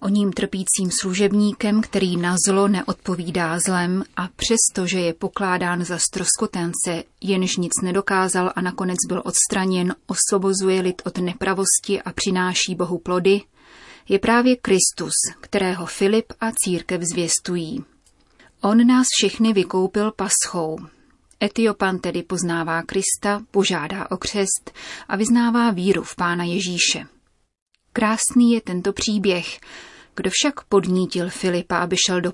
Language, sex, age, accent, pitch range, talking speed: Czech, female, 30-49, native, 180-210 Hz, 125 wpm